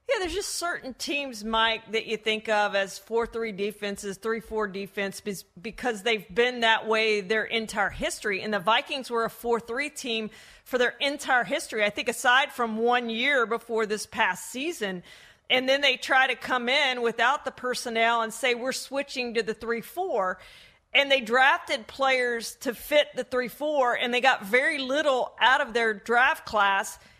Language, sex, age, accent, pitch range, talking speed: English, female, 40-59, American, 225-270 Hz, 175 wpm